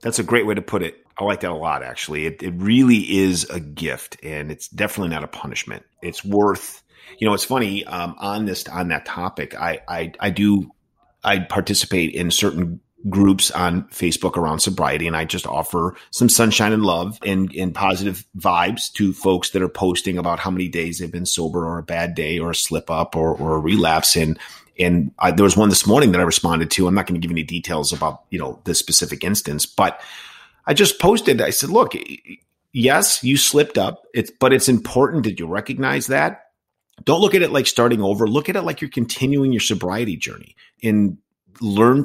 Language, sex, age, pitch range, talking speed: English, male, 30-49, 85-115 Hz, 210 wpm